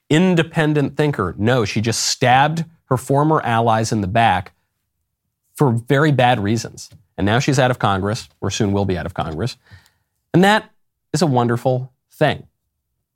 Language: English